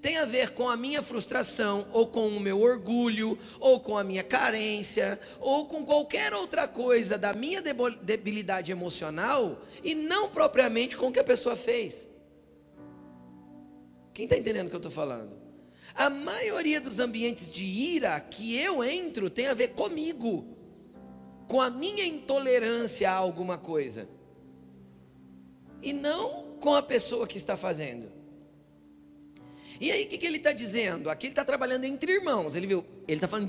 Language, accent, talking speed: Portuguese, Brazilian, 160 wpm